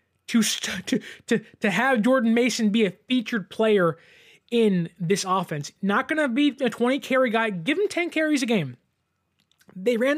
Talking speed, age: 165 wpm, 20-39